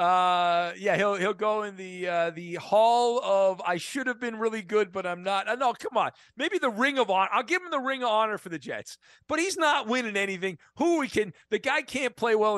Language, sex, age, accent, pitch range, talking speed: English, male, 40-59, American, 165-215 Hz, 250 wpm